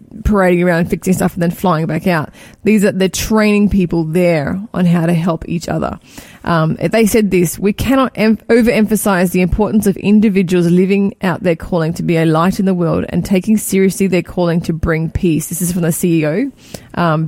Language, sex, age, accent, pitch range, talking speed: English, female, 20-39, Australian, 175-210 Hz, 200 wpm